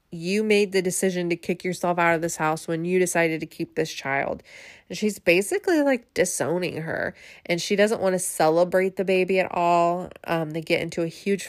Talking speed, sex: 210 wpm, female